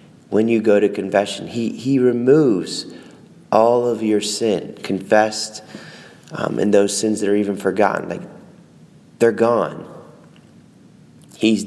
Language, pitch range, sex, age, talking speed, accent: English, 95-115 Hz, male, 30-49, 130 wpm, American